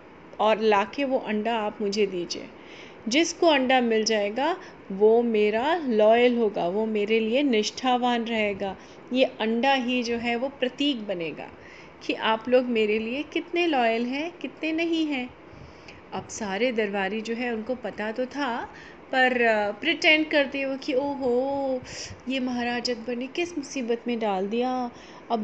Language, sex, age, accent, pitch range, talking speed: Hindi, female, 30-49, native, 215-275 Hz, 155 wpm